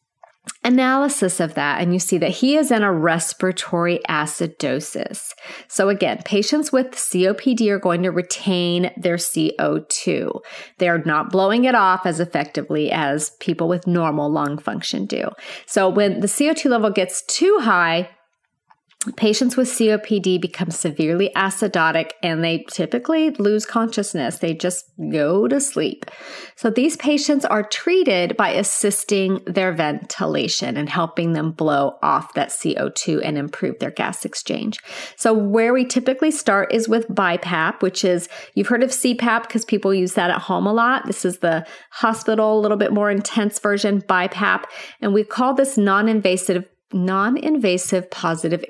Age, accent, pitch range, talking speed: 30-49, American, 175-230 Hz, 150 wpm